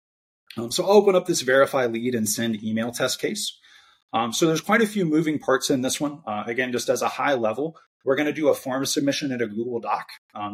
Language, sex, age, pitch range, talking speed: English, male, 30-49, 115-150 Hz, 245 wpm